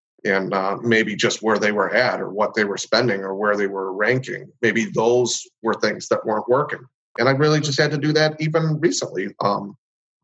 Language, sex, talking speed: English, male, 215 wpm